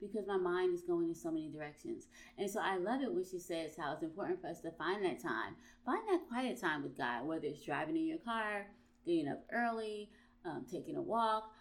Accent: American